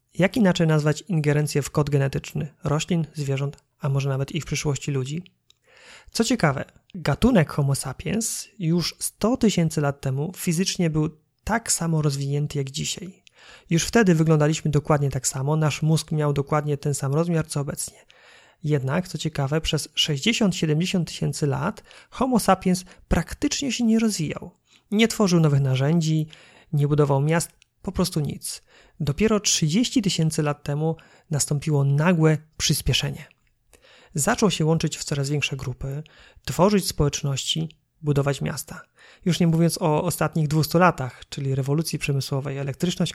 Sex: male